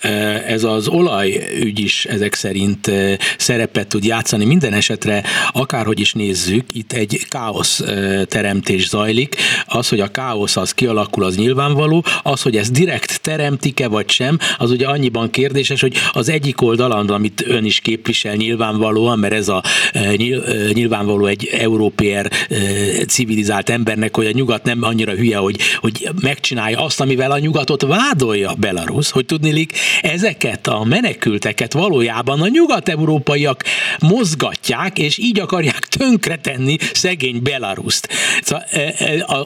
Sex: male